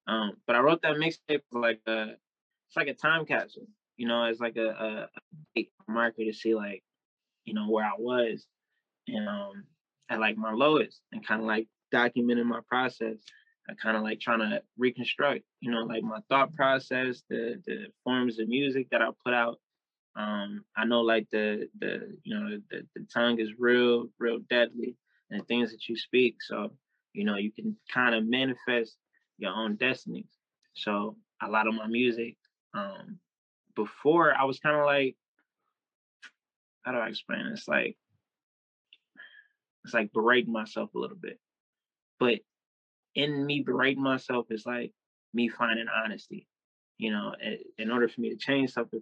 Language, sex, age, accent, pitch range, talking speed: English, male, 20-39, American, 110-135 Hz, 175 wpm